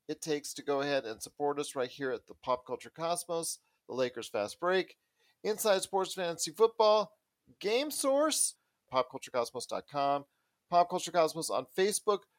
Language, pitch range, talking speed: English, 140-190 Hz, 155 wpm